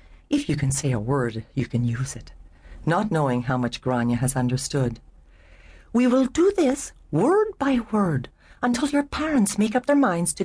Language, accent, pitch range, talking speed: English, American, 125-195 Hz, 185 wpm